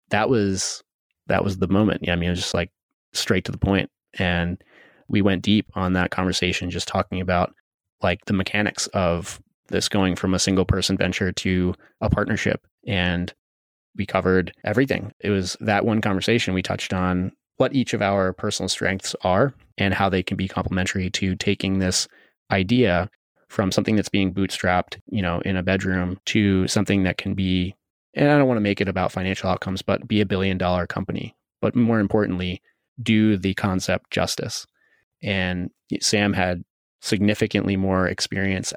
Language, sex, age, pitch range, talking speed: English, male, 20-39, 95-105 Hz, 175 wpm